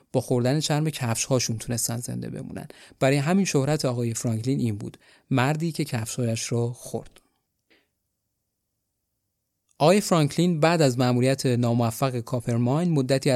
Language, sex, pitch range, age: Persian, male, 125-150 Hz, 30-49